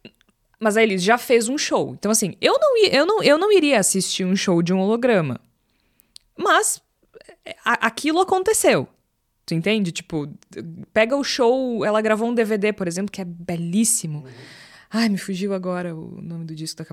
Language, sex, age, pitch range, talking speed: Portuguese, female, 20-39, 170-245 Hz, 165 wpm